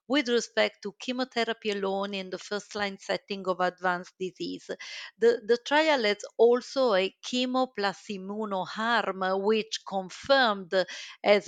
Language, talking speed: English, 130 wpm